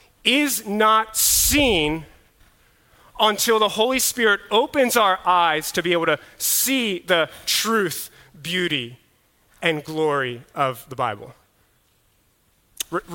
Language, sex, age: English, male, 30-49